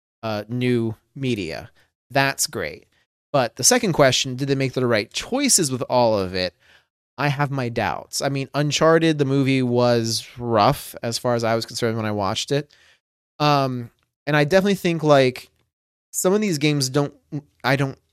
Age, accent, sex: 30-49, American, male